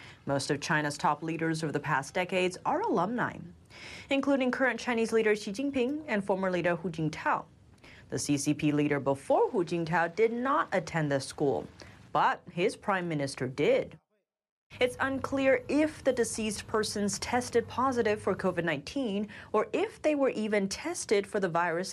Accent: American